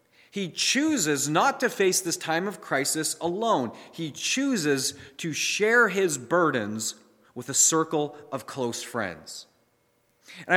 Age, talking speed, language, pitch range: 30-49, 130 wpm, English, 135-190 Hz